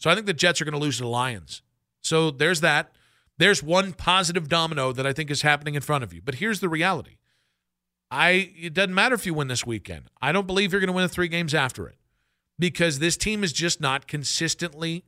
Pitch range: 145-180 Hz